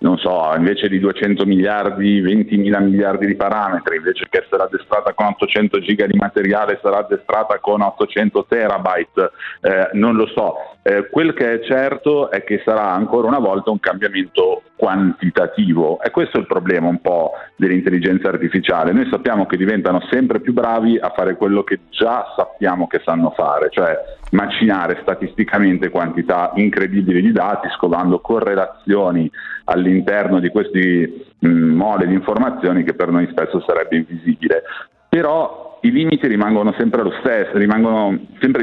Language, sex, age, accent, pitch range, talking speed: Italian, male, 40-59, native, 95-120 Hz, 150 wpm